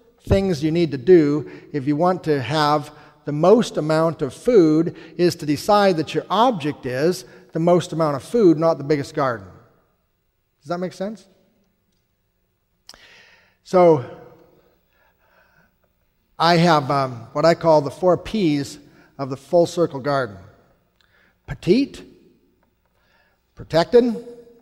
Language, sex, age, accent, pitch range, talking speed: English, male, 40-59, American, 140-180 Hz, 125 wpm